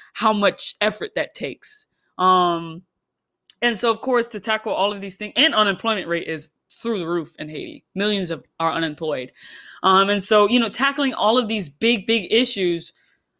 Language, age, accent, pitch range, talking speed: English, 20-39, American, 175-225 Hz, 185 wpm